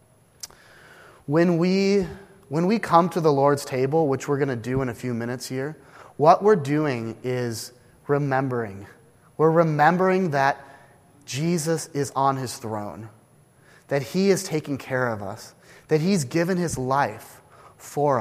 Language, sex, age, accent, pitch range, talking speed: English, male, 30-49, American, 125-165 Hz, 150 wpm